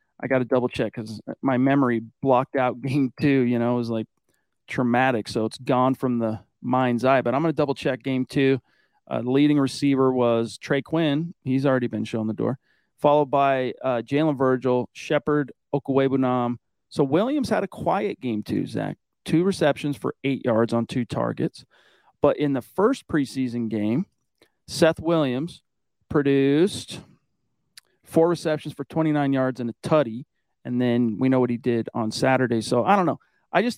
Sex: male